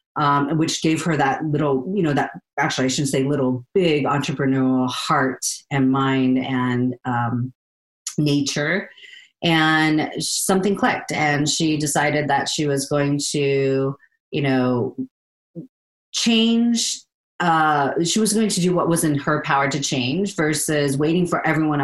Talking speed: 145 wpm